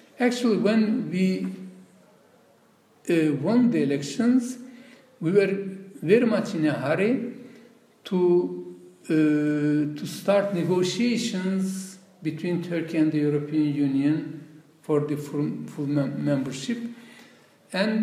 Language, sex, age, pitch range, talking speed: English, male, 50-69, 150-215 Hz, 105 wpm